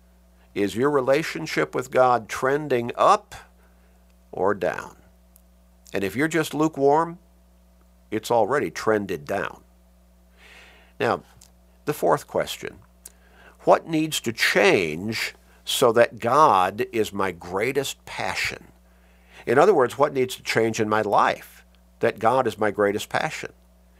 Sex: male